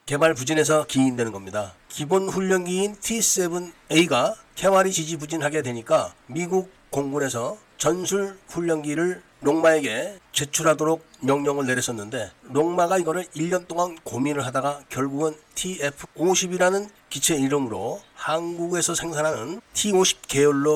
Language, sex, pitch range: Korean, male, 150-185 Hz